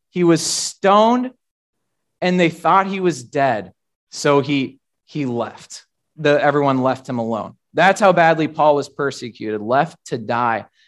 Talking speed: 150 wpm